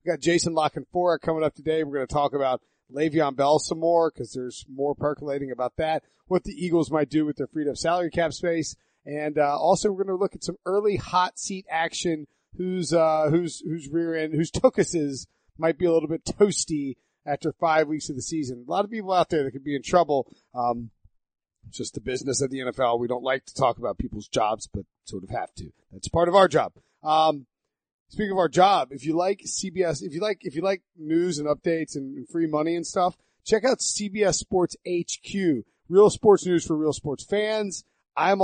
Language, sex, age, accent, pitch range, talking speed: English, male, 40-59, American, 145-175 Hz, 215 wpm